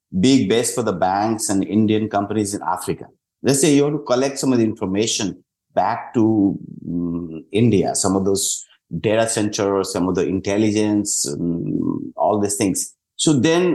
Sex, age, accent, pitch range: male, 50-69, Indian, 100-135 Hz